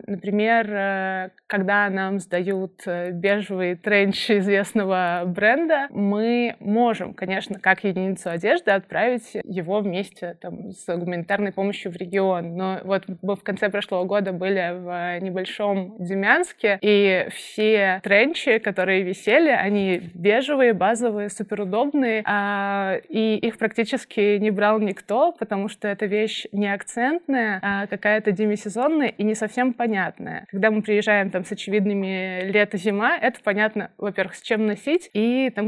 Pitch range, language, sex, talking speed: 190-220 Hz, Russian, female, 130 wpm